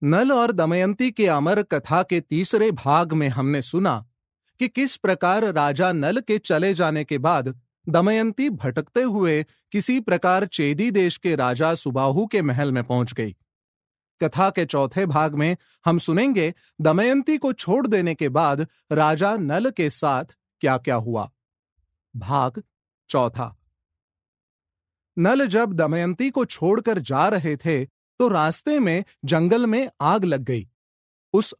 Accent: native